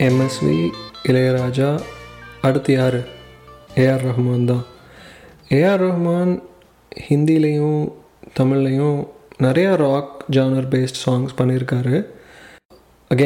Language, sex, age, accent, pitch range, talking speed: Tamil, male, 30-49, native, 125-145 Hz, 80 wpm